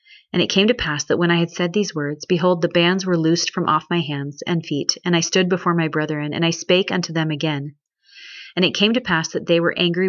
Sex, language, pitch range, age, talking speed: female, English, 160-185 Hz, 30-49, 260 wpm